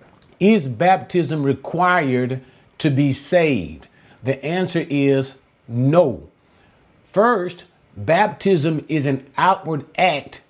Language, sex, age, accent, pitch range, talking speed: English, male, 50-69, American, 135-180 Hz, 90 wpm